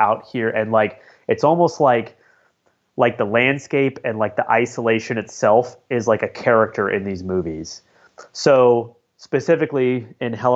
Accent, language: American, English